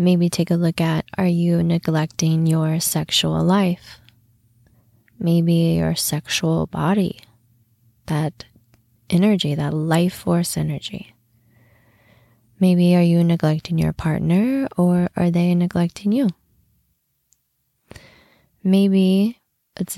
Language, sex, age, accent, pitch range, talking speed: English, female, 20-39, American, 160-190 Hz, 100 wpm